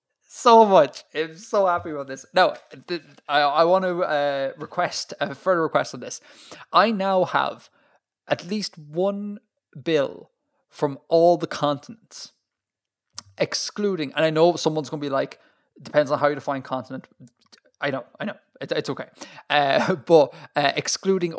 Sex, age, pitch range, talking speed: male, 20-39, 135-170 Hz, 155 wpm